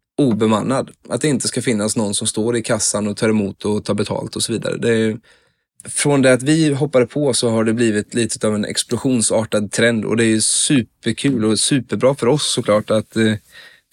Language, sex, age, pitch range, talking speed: Swedish, male, 20-39, 110-130 Hz, 205 wpm